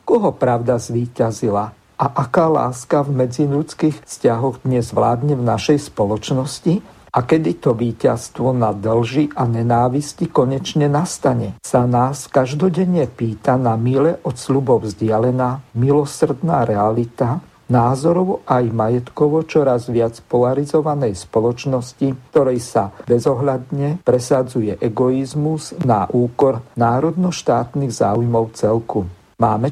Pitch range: 120-145 Hz